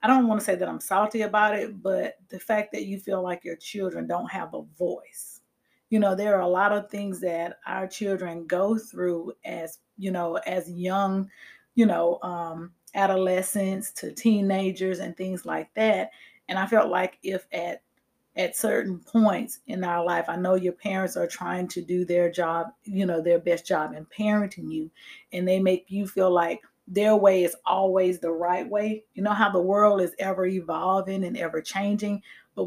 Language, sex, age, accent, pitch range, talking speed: English, female, 30-49, American, 180-215 Hz, 195 wpm